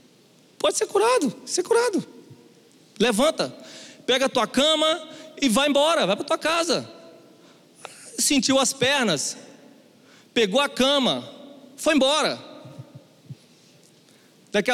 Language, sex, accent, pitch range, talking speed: Portuguese, male, Brazilian, 200-290 Hz, 110 wpm